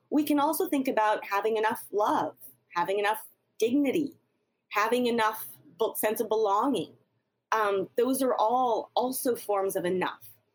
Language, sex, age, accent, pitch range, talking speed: English, female, 30-49, American, 195-250 Hz, 135 wpm